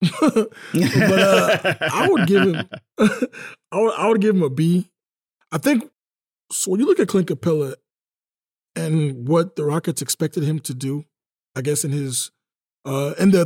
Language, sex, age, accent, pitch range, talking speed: English, male, 20-39, American, 145-175 Hz, 170 wpm